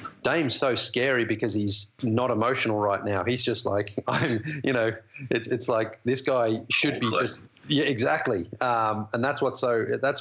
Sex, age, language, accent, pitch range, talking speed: male, 30-49, English, Australian, 110-130 Hz, 180 wpm